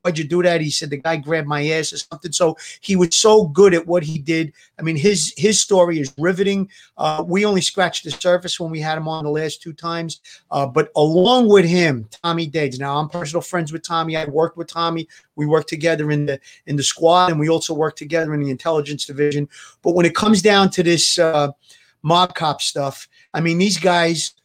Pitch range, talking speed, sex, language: 150-180 Hz, 230 wpm, male, English